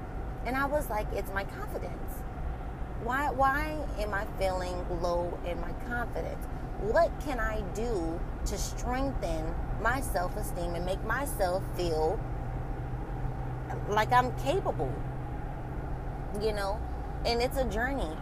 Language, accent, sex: English, American, female